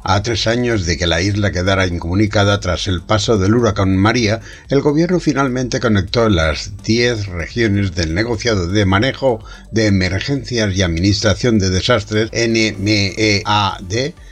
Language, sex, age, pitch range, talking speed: Spanish, male, 60-79, 100-135 Hz, 140 wpm